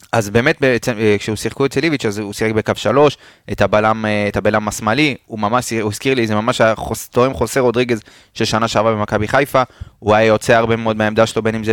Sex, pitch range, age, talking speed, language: male, 110-130 Hz, 20-39, 210 wpm, Hebrew